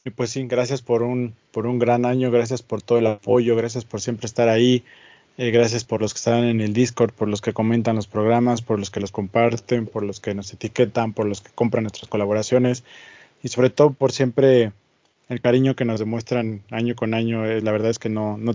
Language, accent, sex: Spanish, Mexican, male